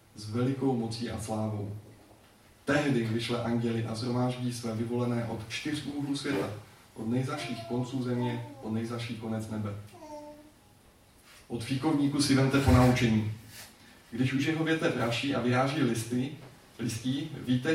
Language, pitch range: Czech, 110-125 Hz